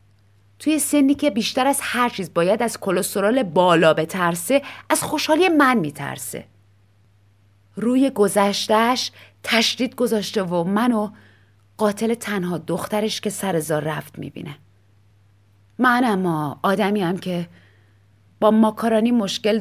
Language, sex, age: Persian, female, 30-49